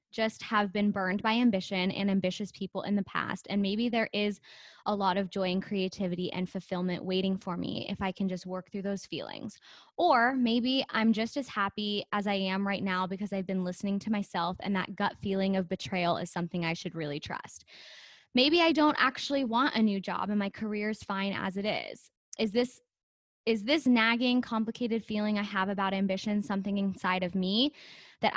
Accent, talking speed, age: American, 205 wpm, 10-29